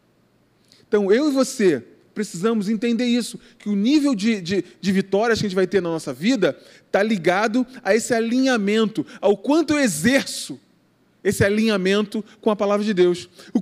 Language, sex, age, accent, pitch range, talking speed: Portuguese, male, 20-39, Brazilian, 195-265 Hz, 170 wpm